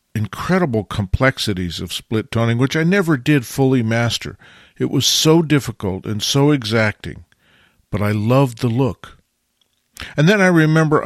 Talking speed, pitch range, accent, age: 145 wpm, 105-145 Hz, American, 50-69